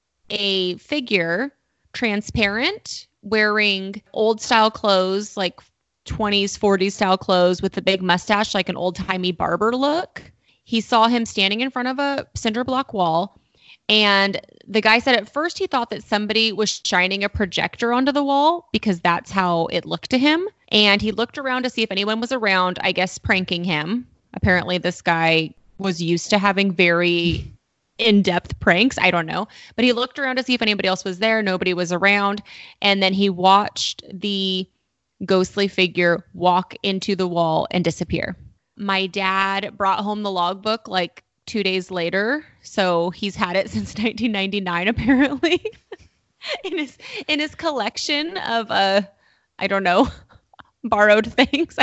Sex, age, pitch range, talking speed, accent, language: female, 20-39, 185-230 Hz, 160 wpm, American, English